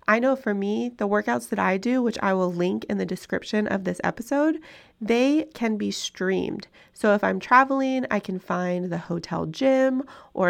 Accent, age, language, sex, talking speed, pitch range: American, 30-49, English, female, 195 wpm, 185-255 Hz